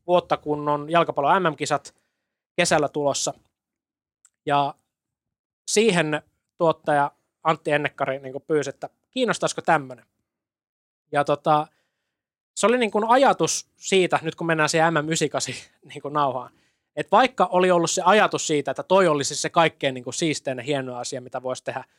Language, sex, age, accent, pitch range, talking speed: Finnish, male, 20-39, native, 140-170 Hz, 140 wpm